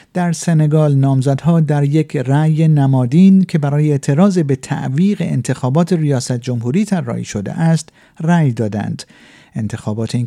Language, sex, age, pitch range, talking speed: Persian, male, 50-69, 125-170 Hz, 135 wpm